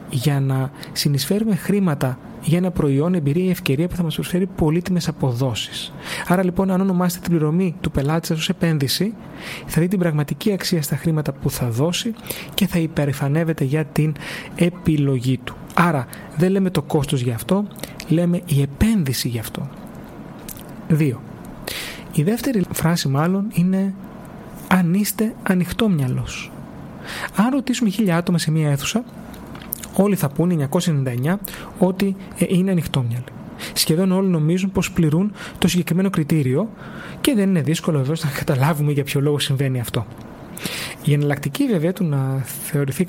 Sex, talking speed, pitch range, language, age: male, 145 wpm, 145-190 Hz, Greek, 30-49